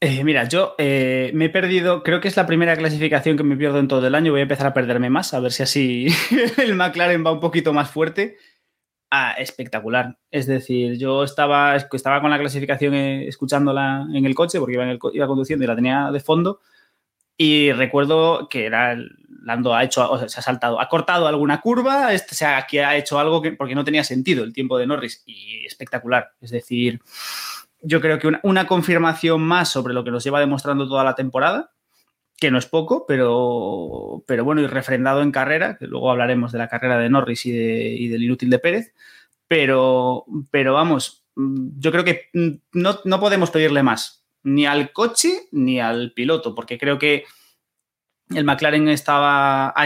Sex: male